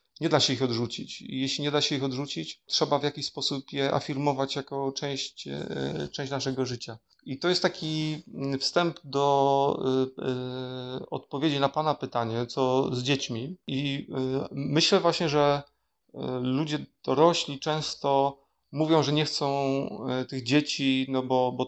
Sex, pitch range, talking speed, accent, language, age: male, 125-140 Hz, 145 wpm, native, Polish, 40-59